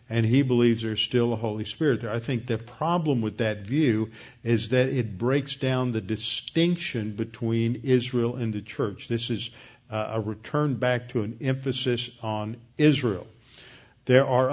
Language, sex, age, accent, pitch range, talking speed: English, male, 50-69, American, 115-135 Hz, 165 wpm